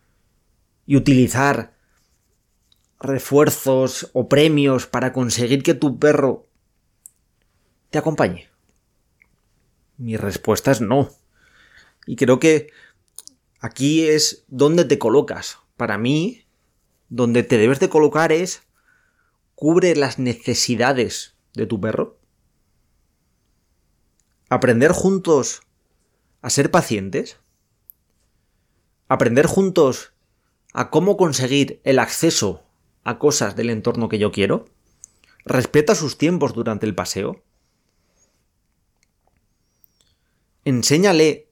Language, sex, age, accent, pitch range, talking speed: Spanish, male, 30-49, Spanish, 120-155 Hz, 90 wpm